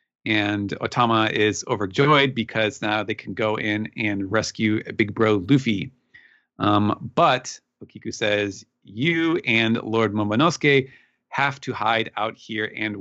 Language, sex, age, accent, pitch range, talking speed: English, male, 30-49, American, 105-140 Hz, 135 wpm